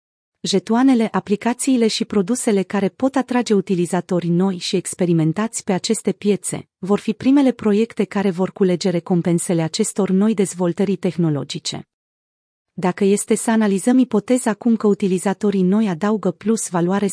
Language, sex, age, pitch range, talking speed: Romanian, female, 30-49, 180-220 Hz, 135 wpm